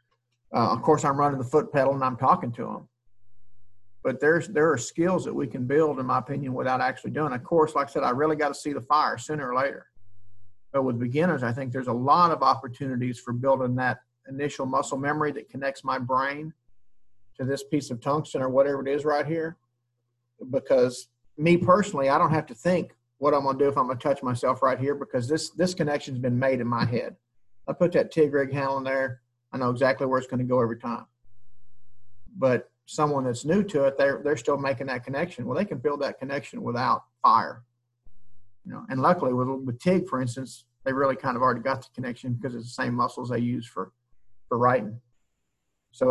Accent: American